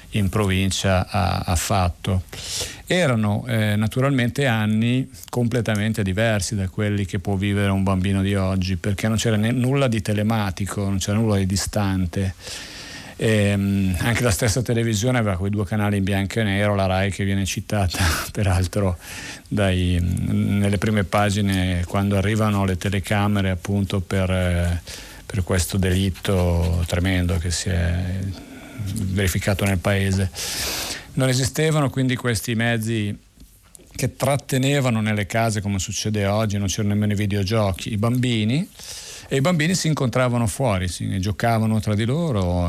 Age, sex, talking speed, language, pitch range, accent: 40-59, male, 140 wpm, Italian, 95-115 Hz, native